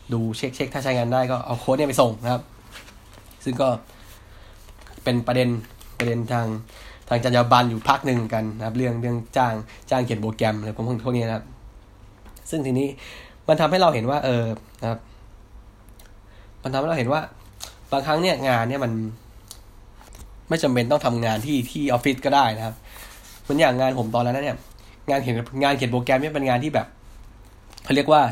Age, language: 10-29, Thai